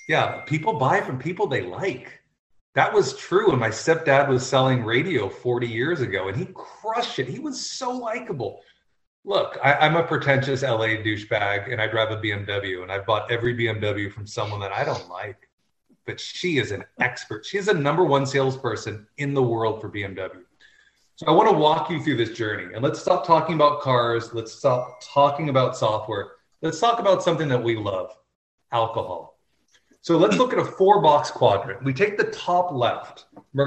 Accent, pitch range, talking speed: American, 120-165 Hz, 190 wpm